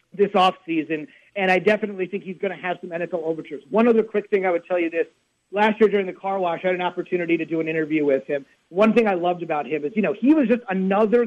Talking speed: 275 wpm